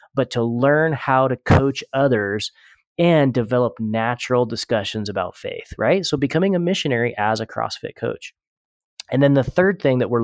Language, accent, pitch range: English, American, 110-130 Hz